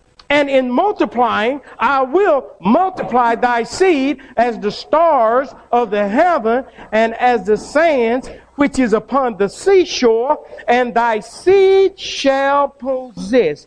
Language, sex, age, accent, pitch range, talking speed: English, male, 50-69, American, 190-270 Hz, 125 wpm